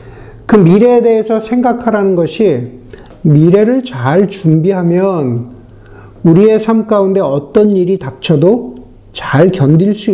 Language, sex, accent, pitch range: Korean, male, native, 135-200 Hz